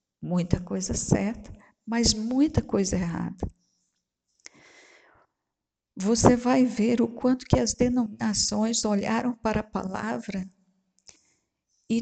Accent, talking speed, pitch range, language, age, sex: Brazilian, 100 wpm, 185-230 Hz, Portuguese, 50-69, female